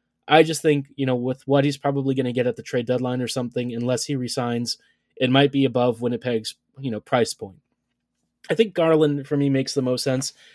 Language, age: English, 20-39